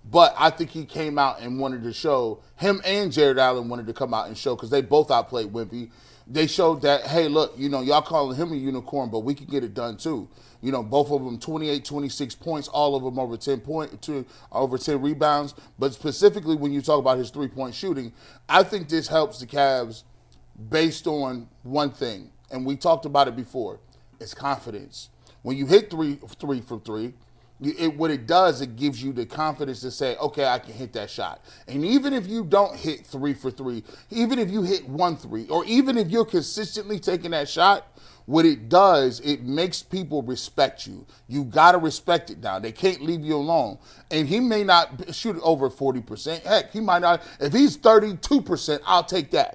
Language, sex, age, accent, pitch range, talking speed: English, male, 30-49, American, 130-170 Hz, 210 wpm